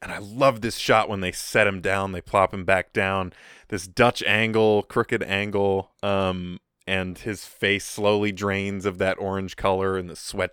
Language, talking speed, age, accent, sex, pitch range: English, 190 wpm, 20-39, American, male, 95-115 Hz